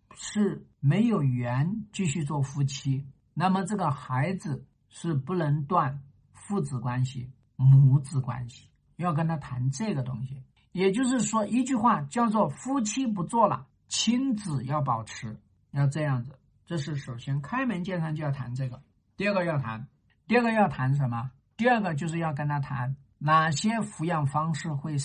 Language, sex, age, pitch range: Chinese, male, 50-69, 130-190 Hz